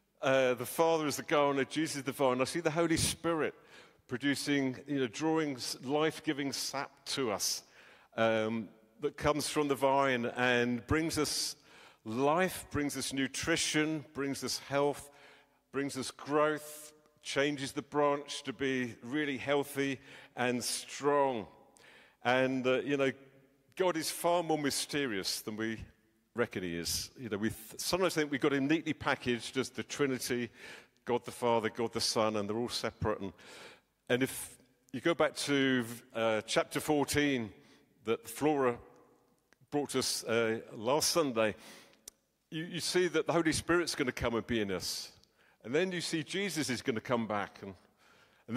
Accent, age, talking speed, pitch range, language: British, 50-69, 160 wpm, 120-150 Hz, English